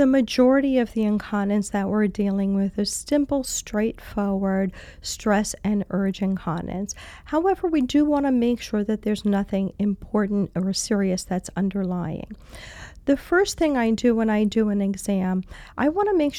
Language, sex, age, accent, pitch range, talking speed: English, female, 40-59, American, 195-245 Hz, 165 wpm